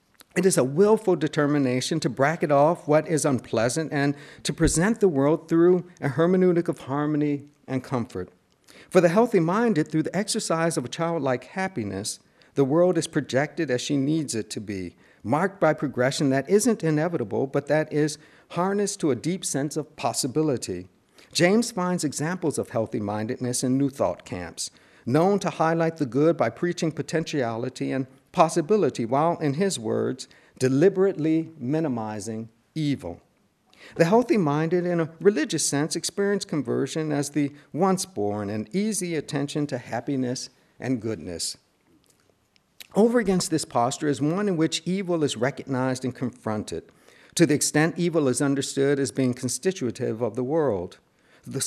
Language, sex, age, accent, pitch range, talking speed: English, male, 50-69, American, 130-170 Hz, 150 wpm